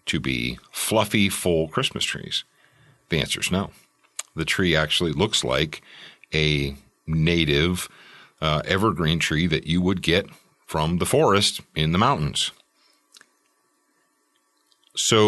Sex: male